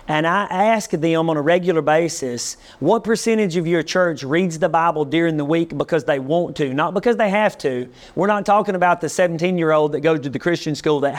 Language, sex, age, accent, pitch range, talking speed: English, male, 30-49, American, 150-190 Hz, 220 wpm